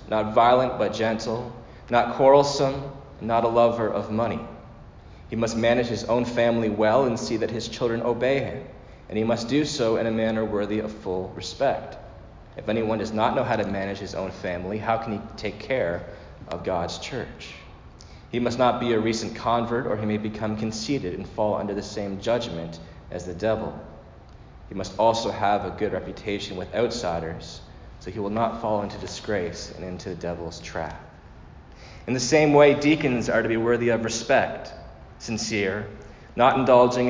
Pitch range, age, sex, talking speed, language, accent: 105-120 Hz, 30-49, male, 180 wpm, English, American